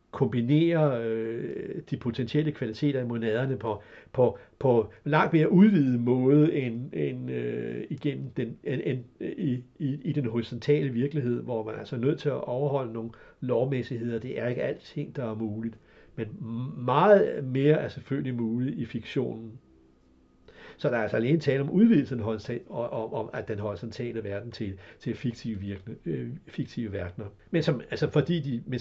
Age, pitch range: 60-79, 115-145 Hz